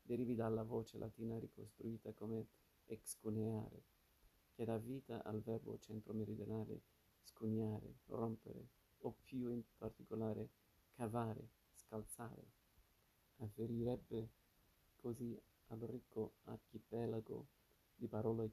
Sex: male